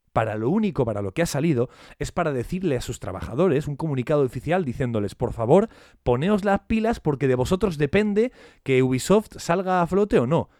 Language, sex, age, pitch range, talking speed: Spanish, male, 30-49, 120-175 Hz, 190 wpm